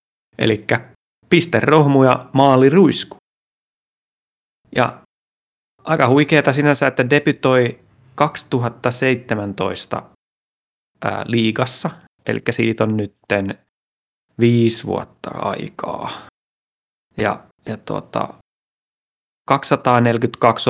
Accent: native